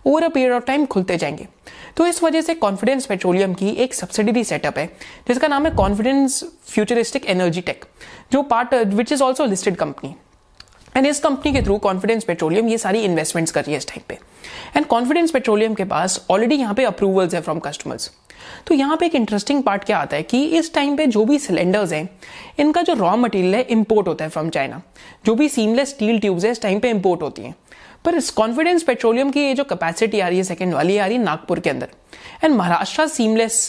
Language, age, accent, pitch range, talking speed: Hindi, 20-39, native, 180-265 Hz, 210 wpm